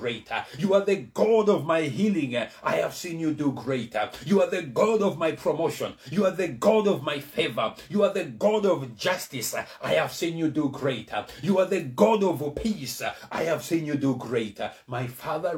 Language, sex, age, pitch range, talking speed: English, male, 60-79, 115-155 Hz, 210 wpm